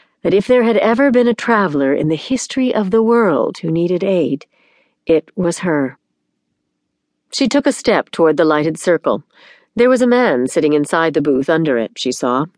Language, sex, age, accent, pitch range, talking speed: English, female, 50-69, American, 150-230 Hz, 190 wpm